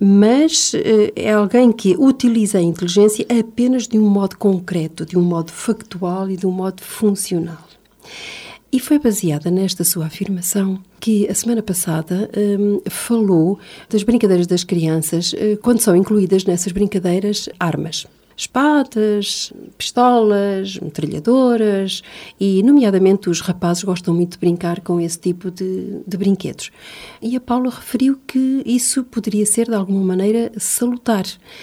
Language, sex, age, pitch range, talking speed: Portuguese, female, 40-59, 180-225 Hz, 140 wpm